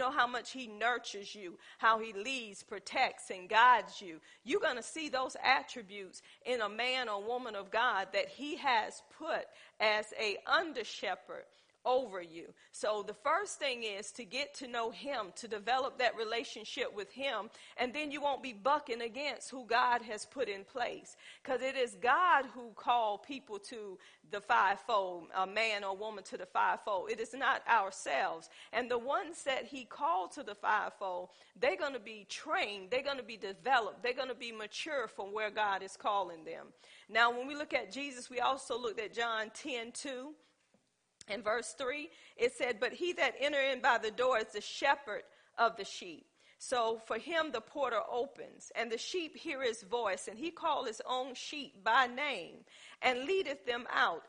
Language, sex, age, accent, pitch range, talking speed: English, female, 40-59, American, 220-285 Hz, 190 wpm